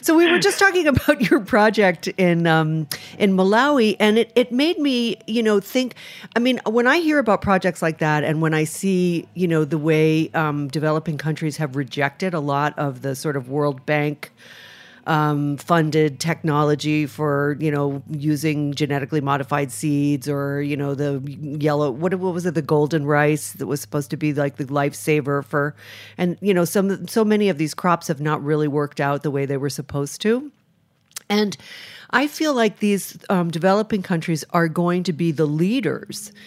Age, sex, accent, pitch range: 40-59, female, American, 150-195 Hz